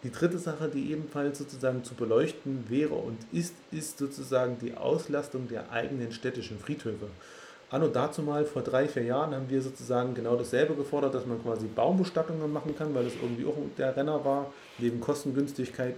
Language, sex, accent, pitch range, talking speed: German, male, German, 115-140 Hz, 180 wpm